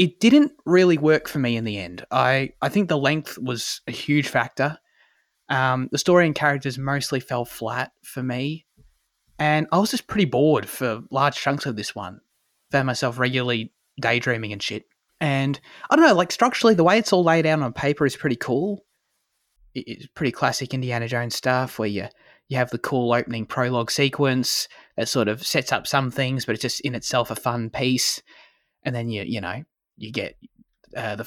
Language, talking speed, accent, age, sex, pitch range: English, 200 wpm, Australian, 20-39, male, 120-155 Hz